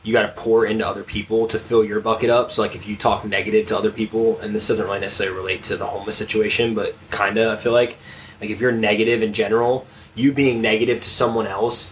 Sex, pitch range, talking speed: male, 110-120 Hz, 245 wpm